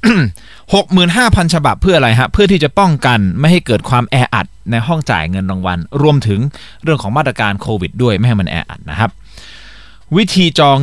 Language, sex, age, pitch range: Thai, male, 20-39, 115-180 Hz